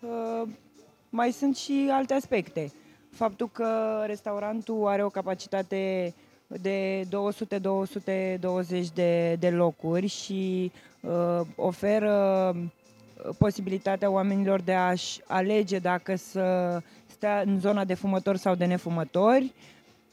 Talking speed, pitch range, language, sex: 100 wpm, 180-220 Hz, Romanian, female